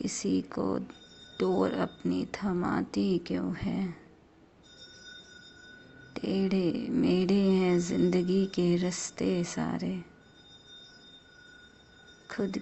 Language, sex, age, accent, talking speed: Hindi, female, 30-49, native, 70 wpm